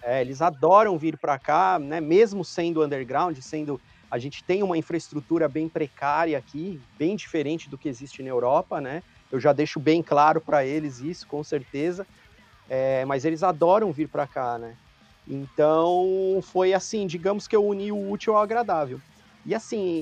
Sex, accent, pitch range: male, Brazilian, 150-185 Hz